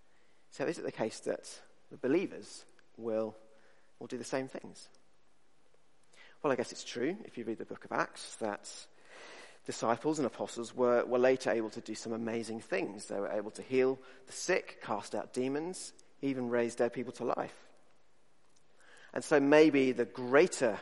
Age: 40-59